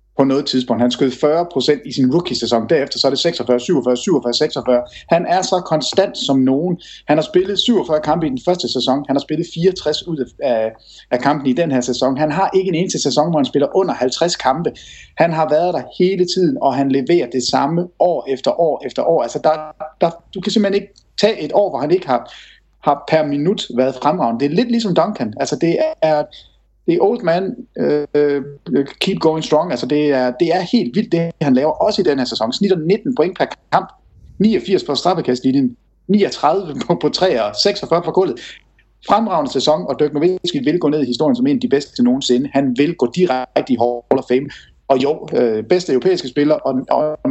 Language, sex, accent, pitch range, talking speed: English, male, Danish, 135-180 Hz, 205 wpm